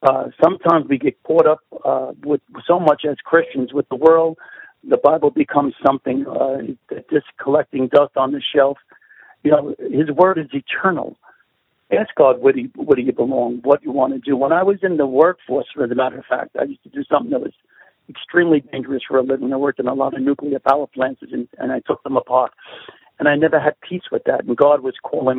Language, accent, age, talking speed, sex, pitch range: English, American, 60-79, 225 wpm, male, 135-160 Hz